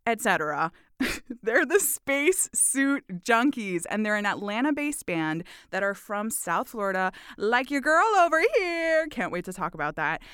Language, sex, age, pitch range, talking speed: English, female, 20-39, 170-230 Hz, 165 wpm